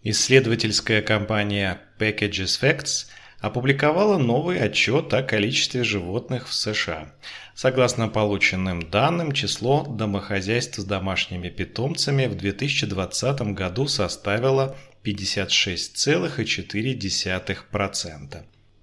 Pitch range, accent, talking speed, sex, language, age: 100-135 Hz, native, 80 wpm, male, Russian, 30-49